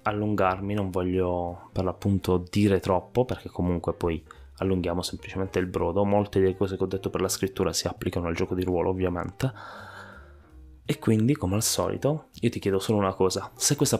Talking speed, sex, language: 185 wpm, male, Italian